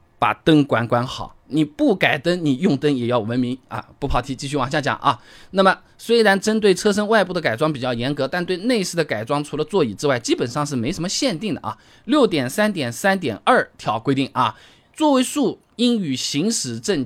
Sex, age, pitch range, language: male, 20-39, 130-205 Hz, Chinese